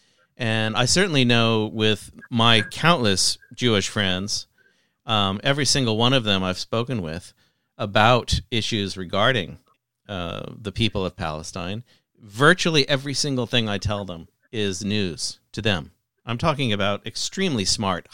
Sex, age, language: male, 40-59, English